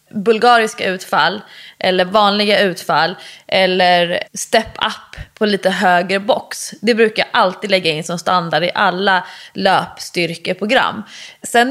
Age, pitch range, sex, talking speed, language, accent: 20-39, 180-225 Hz, female, 125 wpm, English, Swedish